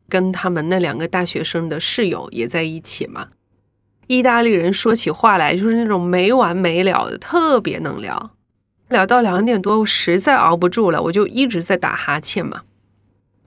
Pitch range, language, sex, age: 170-225 Hz, Chinese, female, 20-39